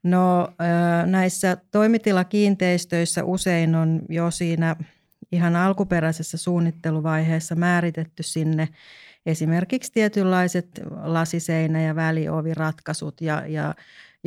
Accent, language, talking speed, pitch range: native, Finnish, 85 wpm, 160-185 Hz